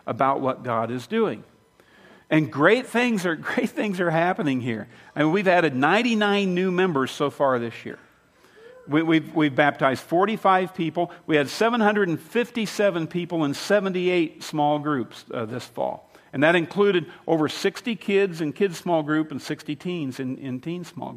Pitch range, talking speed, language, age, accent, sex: 135-190 Hz, 185 wpm, English, 50-69, American, male